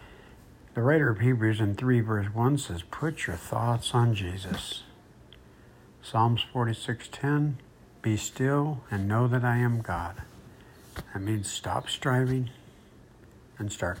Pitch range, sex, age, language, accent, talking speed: 105-125 Hz, male, 60-79, English, American, 130 wpm